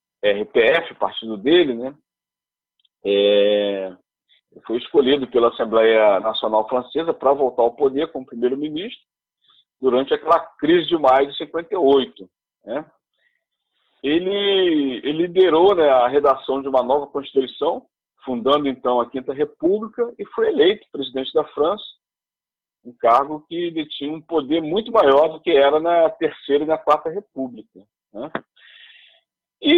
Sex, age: male, 40-59